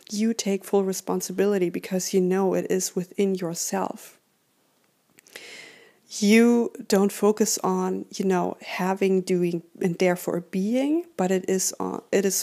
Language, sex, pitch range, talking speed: English, female, 190-225 Hz, 135 wpm